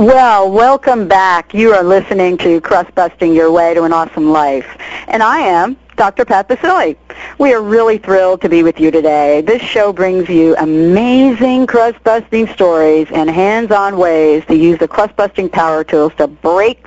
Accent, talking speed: American, 170 wpm